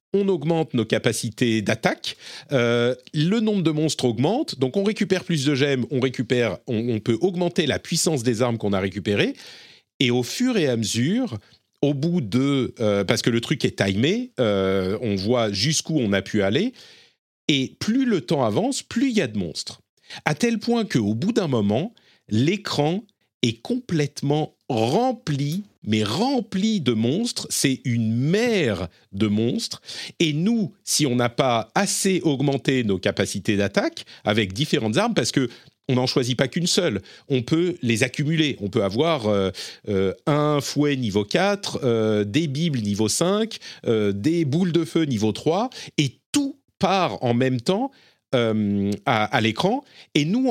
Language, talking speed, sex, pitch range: French, 170 wpm, male, 115-175 Hz